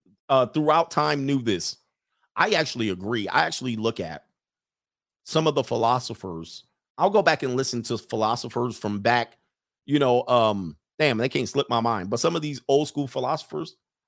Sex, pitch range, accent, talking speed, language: male, 115-150 Hz, American, 175 wpm, English